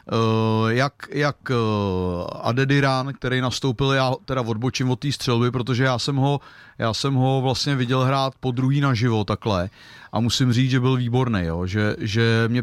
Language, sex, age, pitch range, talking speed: Czech, male, 40-59, 120-135 Hz, 165 wpm